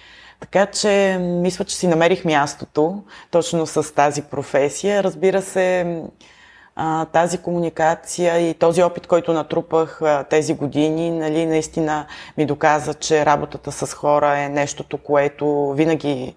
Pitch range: 145-175 Hz